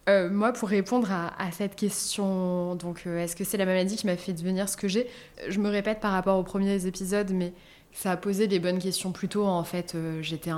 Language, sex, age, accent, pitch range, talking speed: French, female, 20-39, French, 175-200 Hz, 245 wpm